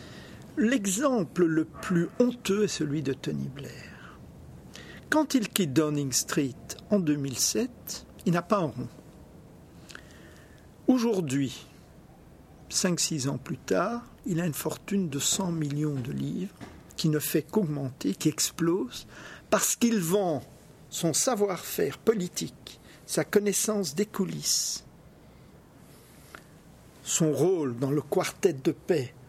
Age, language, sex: 50-69, French, male